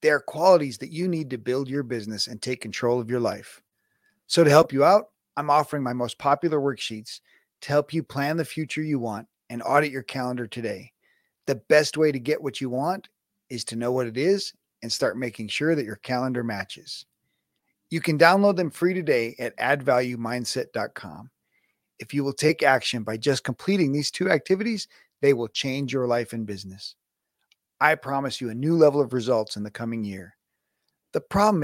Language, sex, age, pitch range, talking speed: English, male, 30-49, 115-150 Hz, 195 wpm